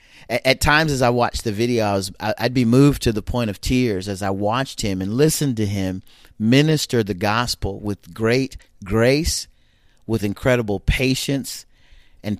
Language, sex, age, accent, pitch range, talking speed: English, male, 40-59, American, 105-130 Hz, 170 wpm